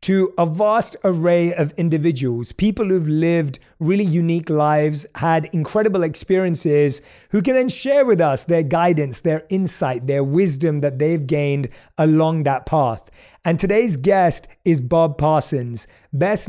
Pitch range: 155-200 Hz